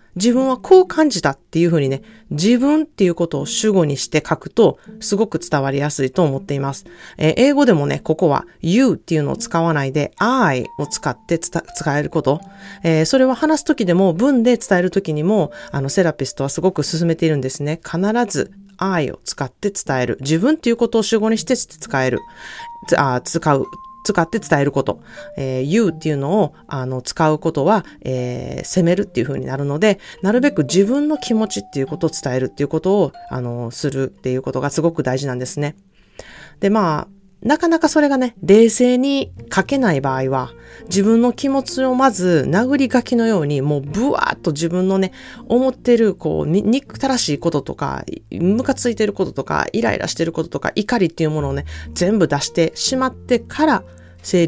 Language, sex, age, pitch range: Japanese, female, 30-49, 145-230 Hz